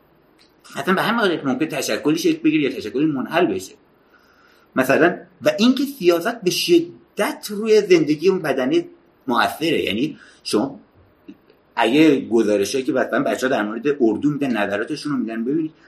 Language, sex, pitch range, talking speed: Persian, male, 140-195 Hz, 150 wpm